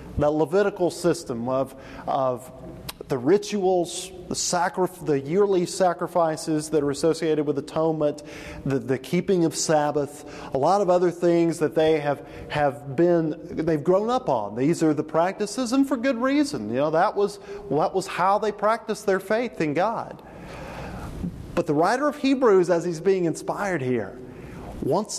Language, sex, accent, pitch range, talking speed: English, male, American, 150-205 Hz, 165 wpm